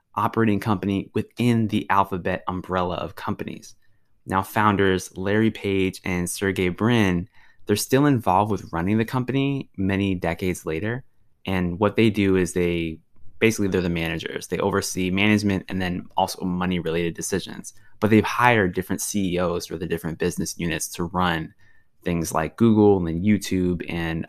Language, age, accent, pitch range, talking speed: English, 20-39, American, 90-105 Hz, 155 wpm